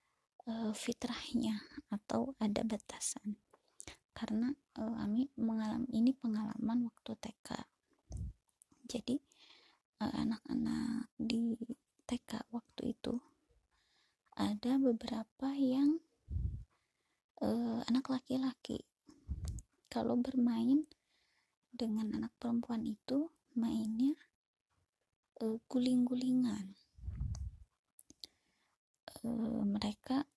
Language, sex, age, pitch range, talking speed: Indonesian, female, 20-39, 225-260 Hz, 65 wpm